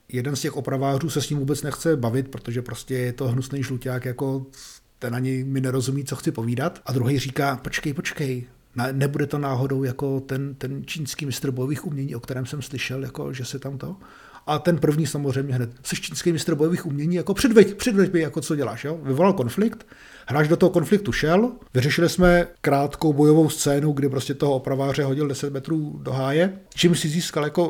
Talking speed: 195 wpm